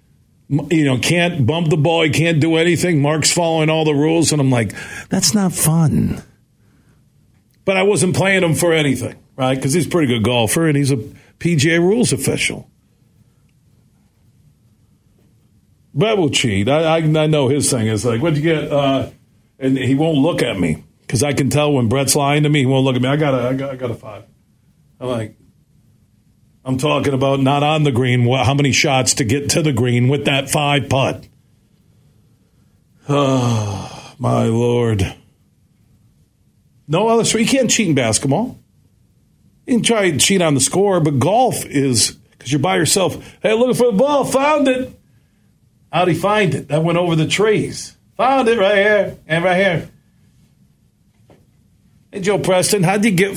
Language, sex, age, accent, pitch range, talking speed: English, male, 50-69, American, 130-170 Hz, 180 wpm